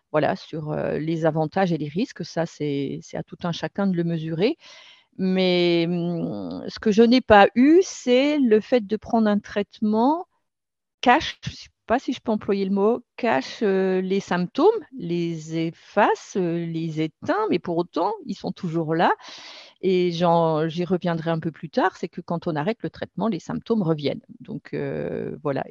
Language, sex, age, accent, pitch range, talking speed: French, female, 50-69, French, 160-210 Hz, 175 wpm